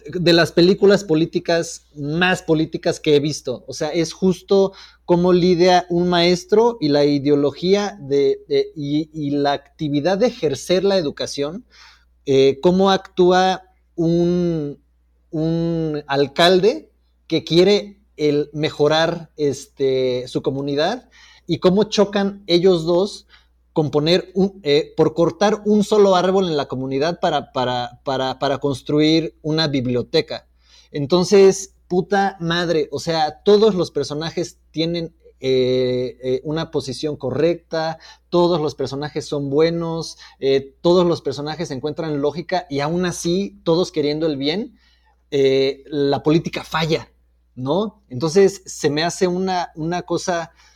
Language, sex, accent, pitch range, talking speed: Spanish, male, Mexican, 145-180 Hz, 125 wpm